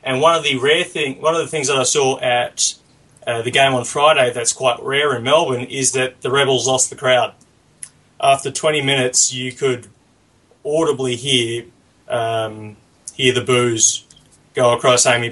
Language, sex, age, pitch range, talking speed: English, male, 20-39, 120-140 Hz, 175 wpm